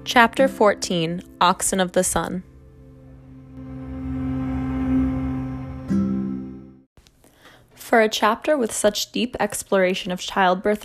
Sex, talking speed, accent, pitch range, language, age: female, 85 wpm, American, 165-205 Hz, English, 10-29